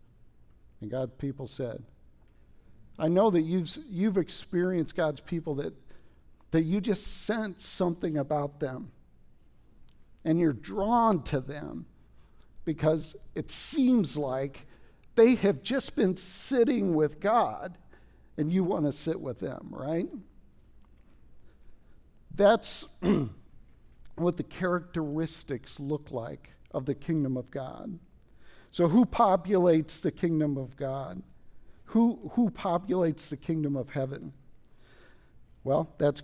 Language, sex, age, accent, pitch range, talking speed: English, male, 50-69, American, 140-180 Hz, 120 wpm